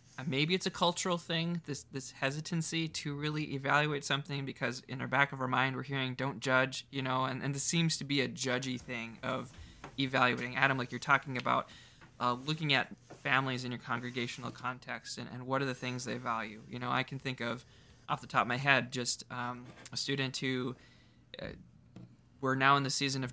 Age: 20-39